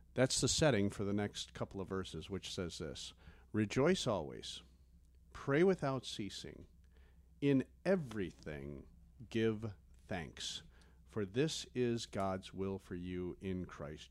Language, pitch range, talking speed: English, 85-125 Hz, 130 wpm